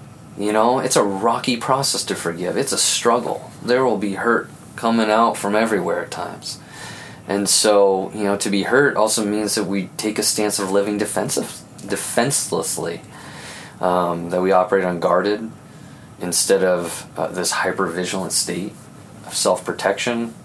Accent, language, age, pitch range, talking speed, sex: American, English, 20-39, 90-110 Hz, 155 wpm, male